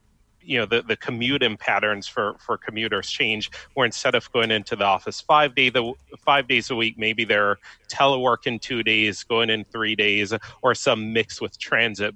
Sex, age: male, 30-49